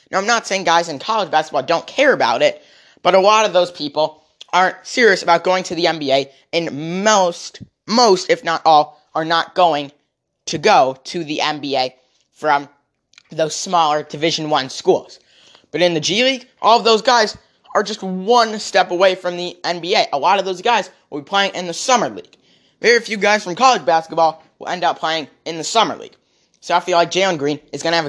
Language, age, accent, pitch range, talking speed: English, 10-29, American, 150-185 Hz, 210 wpm